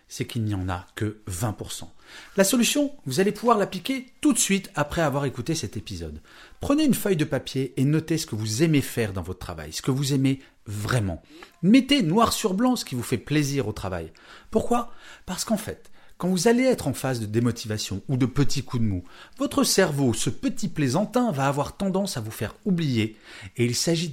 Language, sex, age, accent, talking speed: French, male, 40-59, French, 210 wpm